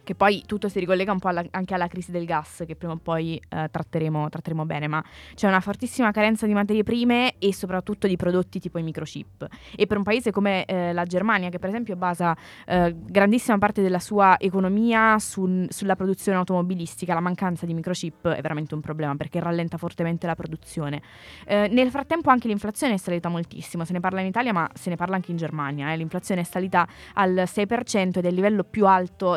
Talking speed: 205 wpm